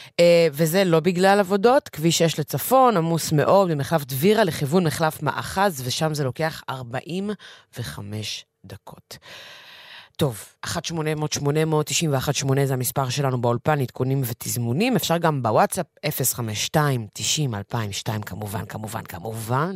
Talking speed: 100 wpm